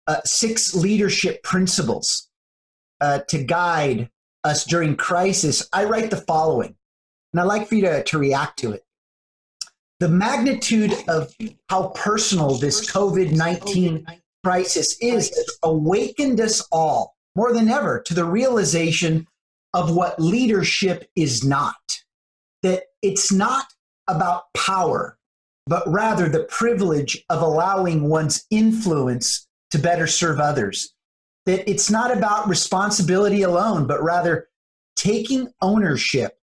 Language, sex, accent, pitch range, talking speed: English, male, American, 160-210 Hz, 120 wpm